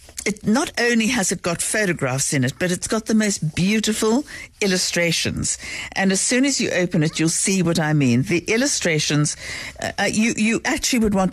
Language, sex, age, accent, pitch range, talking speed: English, female, 60-79, British, 160-205 Hz, 190 wpm